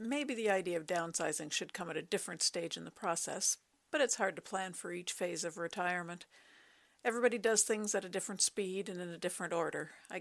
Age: 50-69